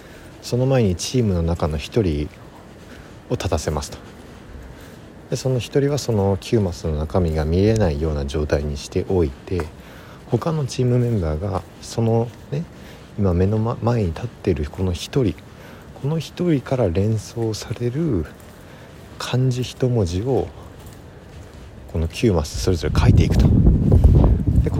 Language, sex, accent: Japanese, male, native